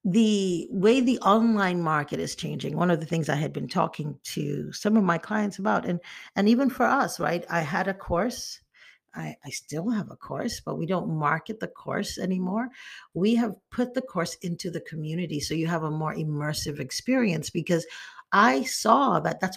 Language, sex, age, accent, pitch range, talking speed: English, female, 50-69, American, 155-205 Hz, 195 wpm